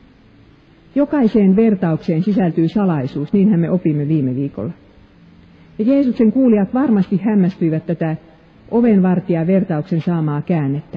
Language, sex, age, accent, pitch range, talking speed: Finnish, female, 50-69, native, 150-205 Hz, 105 wpm